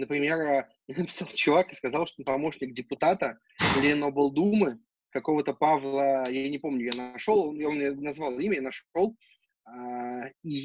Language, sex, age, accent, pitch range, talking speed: Russian, male, 20-39, native, 140-195 Hz, 135 wpm